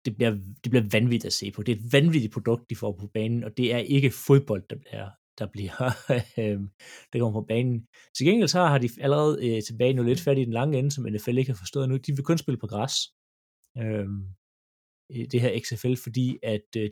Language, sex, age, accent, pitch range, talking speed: Danish, male, 30-49, native, 110-140 Hz, 230 wpm